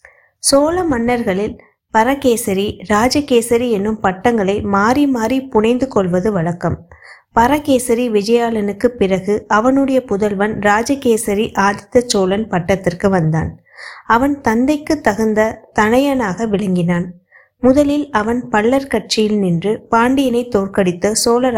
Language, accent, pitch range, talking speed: Tamil, native, 200-250 Hz, 90 wpm